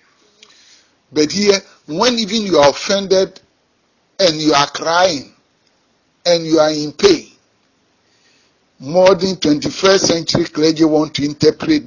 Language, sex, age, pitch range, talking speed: English, male, 60-79, 145-210 Hz, 120 wpm